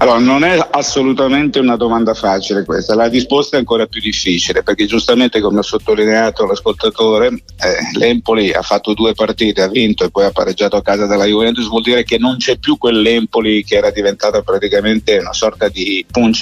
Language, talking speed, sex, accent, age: Italian, 185 wpm, male, native, 50-69